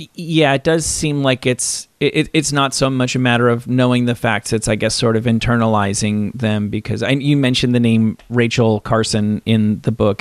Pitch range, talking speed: 110-135 Hz, 205 wpm